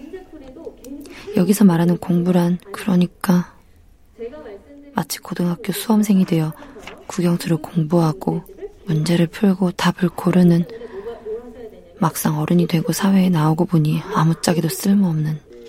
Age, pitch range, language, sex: 20-39, 165-215 Hz, Korean, female